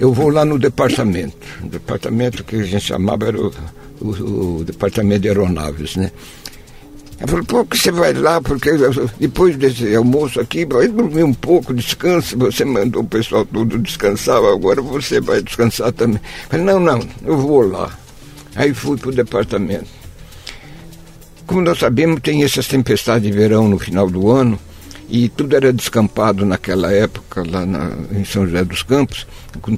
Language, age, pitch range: Portuguese, 60-79, 100-130 Hz